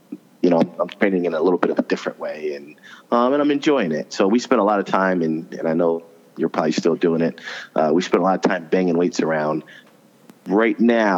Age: 30-49